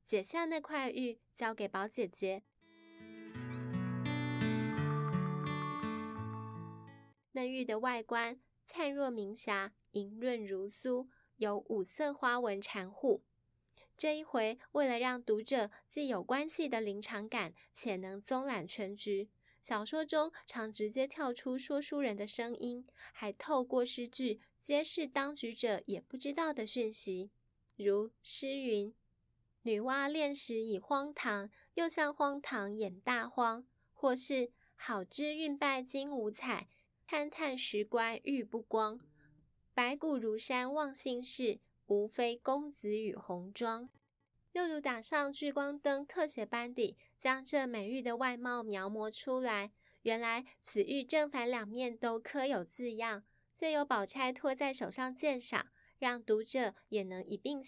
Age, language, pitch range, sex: 10-29, Chinese, 205-270 Hz, female